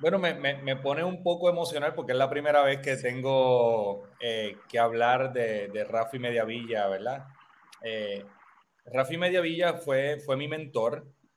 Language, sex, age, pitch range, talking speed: Spanish, male, 30-49, 125-160 Hz, 160 wpm